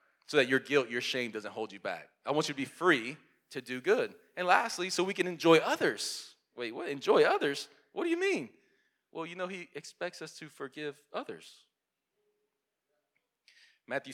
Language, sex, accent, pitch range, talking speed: English, male, American, 155-205 Hz, 185 wpm